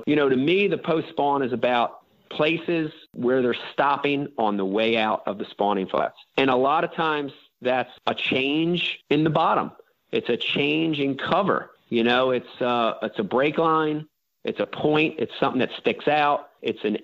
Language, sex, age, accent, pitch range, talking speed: English, male, 40-59, American, 120-150 Hz, 190 wpm